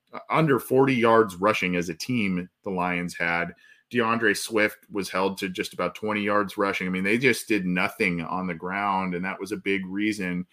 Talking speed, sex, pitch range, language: 200 wpm, male, 100-115 Hz, English